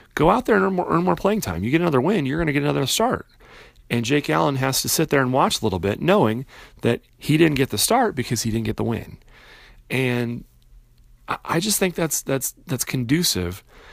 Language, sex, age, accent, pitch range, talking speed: English, male, 30-49, American, 110-145 Hz, 230 wpm